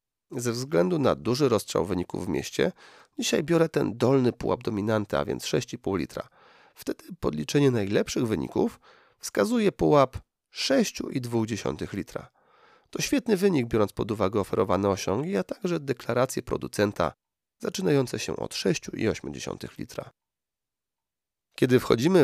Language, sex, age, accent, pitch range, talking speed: Polish, male, 40-59, native, 95-145 Hz, 120 wpm